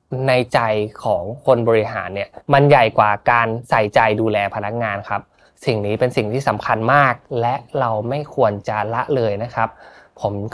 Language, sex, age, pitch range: Thai, male, 20-39, 105-140 Hz